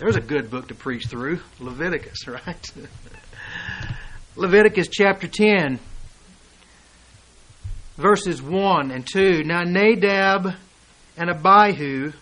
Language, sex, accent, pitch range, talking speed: English, male, American, 140-200 Hz, 100 wpm